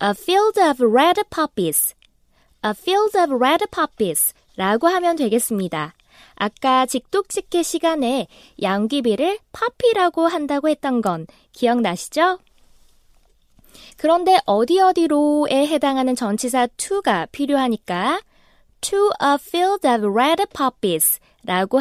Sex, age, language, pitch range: female, 20-39, Korean, 220-340 Hz